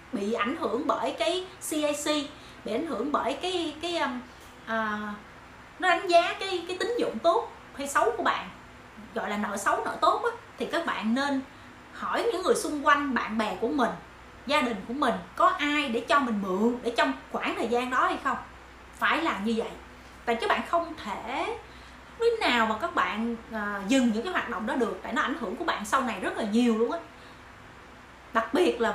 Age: 20-39